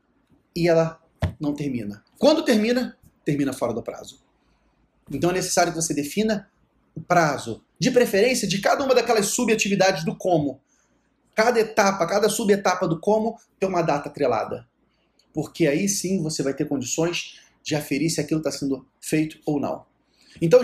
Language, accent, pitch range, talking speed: Portuguese, Brazilian, 150-205 Hz, 155 wpm